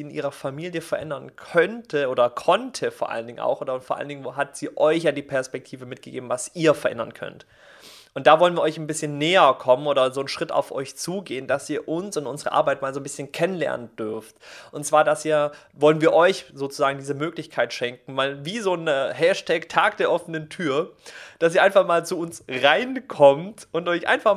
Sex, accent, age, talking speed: male, German, 30-49, 210 wpm